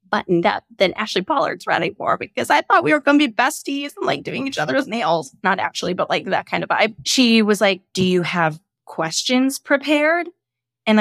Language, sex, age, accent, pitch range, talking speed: English, female, 20-39, American, 180-255 Hz, 215 wpm